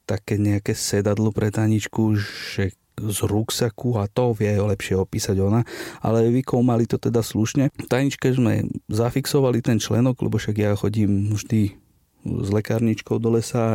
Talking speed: 155 wpm